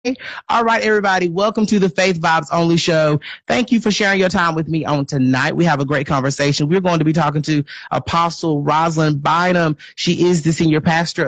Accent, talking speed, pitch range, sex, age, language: American, 205 wpm, 135-170 Hz, male, 30-49, English